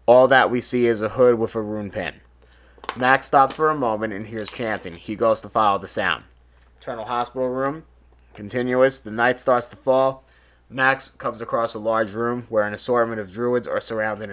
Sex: male